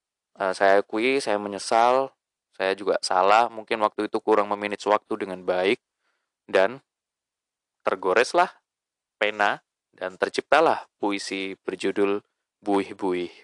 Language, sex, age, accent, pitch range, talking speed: Indonesian, male, 20-39, native, 105-125 Hz, 105 wpm